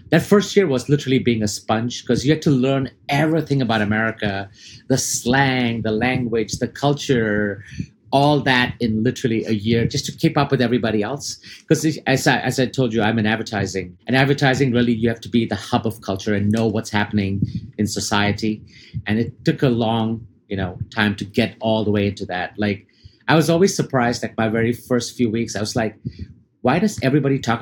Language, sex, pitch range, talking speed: English, male, 110-145 Hz, 210 wpm